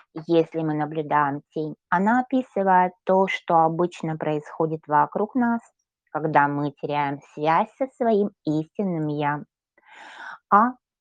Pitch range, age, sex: 150-205 Hz, 20-39, female